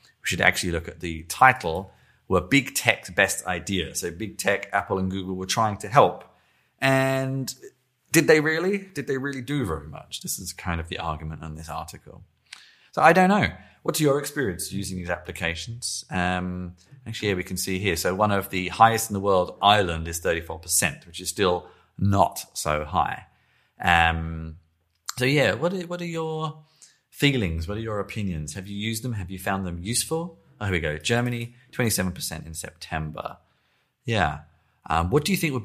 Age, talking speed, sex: 30-49, 190 wpm, male